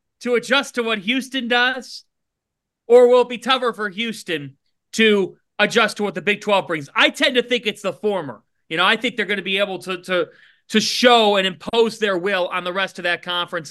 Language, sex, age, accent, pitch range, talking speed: English, male, 40-59, American, 185-245 Hz, 225 wpm